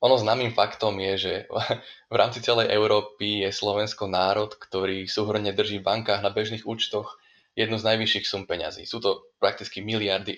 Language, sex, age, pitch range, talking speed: Slovak, male, 10-29, 100-110 Hz, 170 wpm